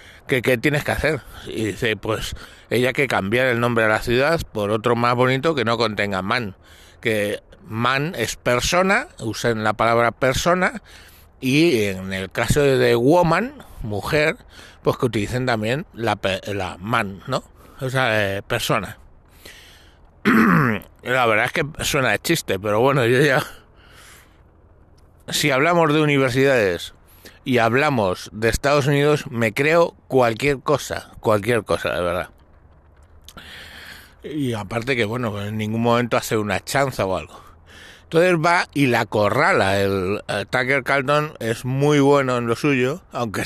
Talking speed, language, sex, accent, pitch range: 150 wpm, Spanish, male, Spanish, 105-140 Hz